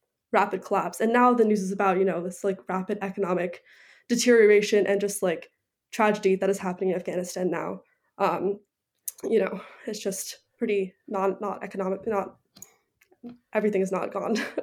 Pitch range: 195-235 Hz